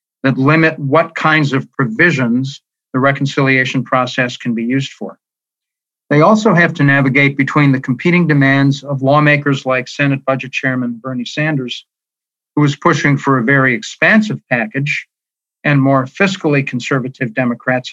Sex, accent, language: male, American, English